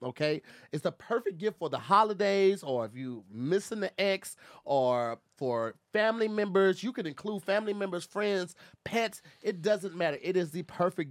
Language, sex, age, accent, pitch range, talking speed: English, male, 30-49, American, 135-190 Hz, 175 wpm